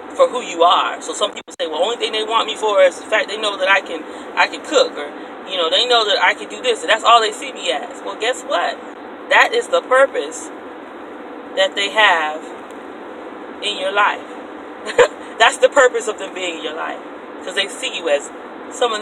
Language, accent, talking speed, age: English, American, 225 wpm, 30-49